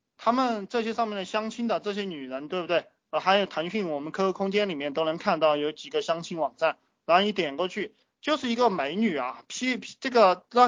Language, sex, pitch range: Chinese, male, 150-210 Hz